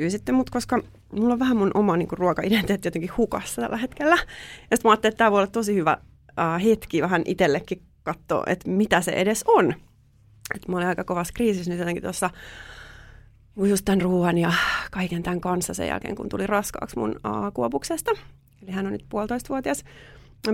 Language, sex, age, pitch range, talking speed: Finnish, female, 30-49, 165-240 Hz, 175 wpm